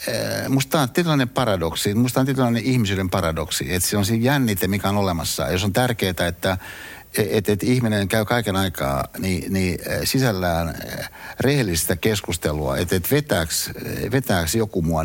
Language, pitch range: Finnish, 85-110 Hz